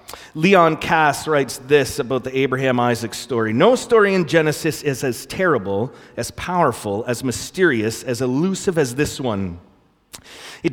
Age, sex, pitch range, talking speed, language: 30-49, male, 125-160 Hz, 140 wpm, English